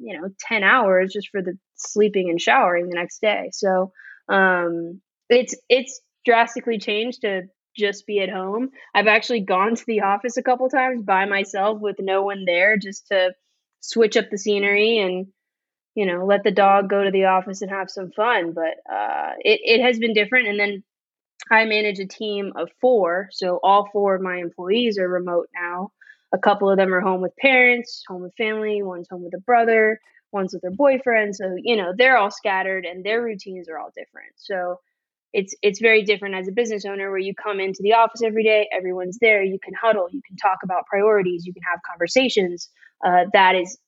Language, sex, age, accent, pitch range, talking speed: English, female, 20-39, American, 185-225 Hz, 205 wpm